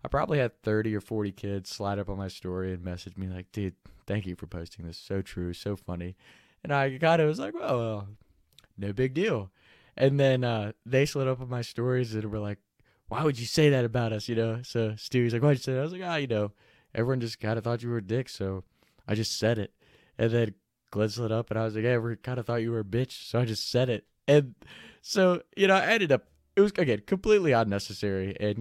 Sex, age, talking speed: male, 20-39, 255 wpm